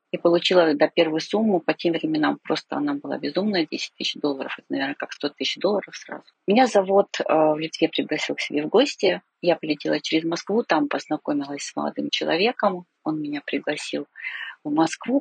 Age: 40-59